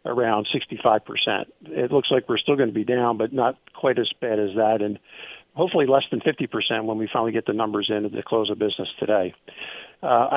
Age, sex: 50-69, male